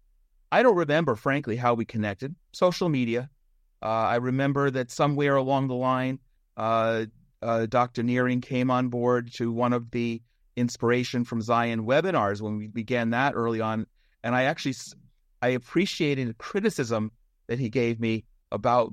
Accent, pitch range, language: American, 110-135 Hz, English